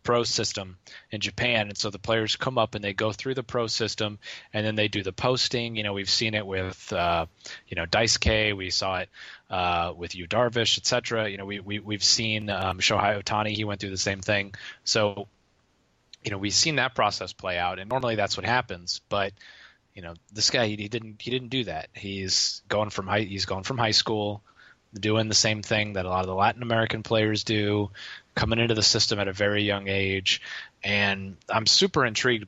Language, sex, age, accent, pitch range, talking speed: English, male, 20-39, American, 100-115 Hz, 220 wpm